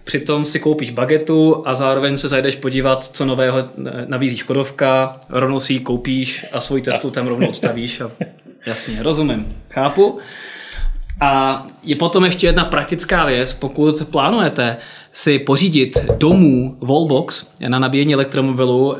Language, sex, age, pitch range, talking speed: Czech, male, 20-39, 130-150 Hz, 135 wpm